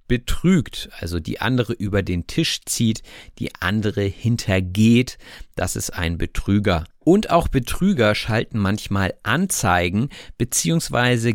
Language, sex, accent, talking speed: German, male, German, 115 wpm